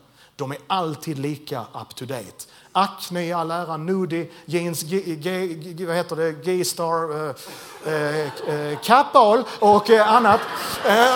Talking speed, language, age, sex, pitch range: 130 wpm, Swedish, 30-49, male, 165-225 Hz